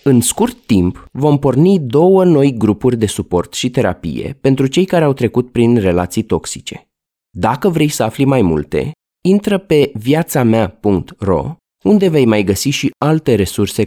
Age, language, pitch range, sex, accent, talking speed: 20-39, Romanian, 95-140 Hz, male, native, 160 wpm